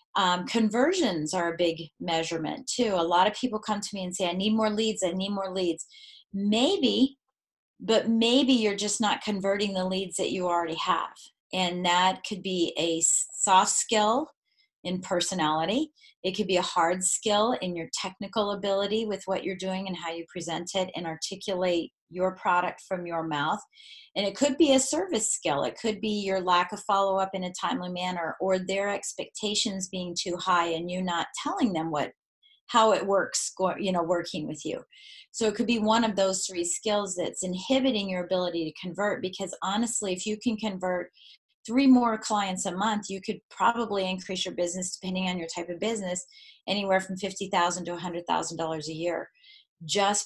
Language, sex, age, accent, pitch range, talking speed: English, female, 30-49, American, 180-220 Hz, 185 wpm